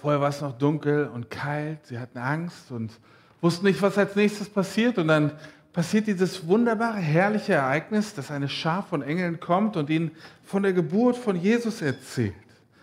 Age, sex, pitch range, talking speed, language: 50-69, male, 155-215 Hz, 180 wpm, German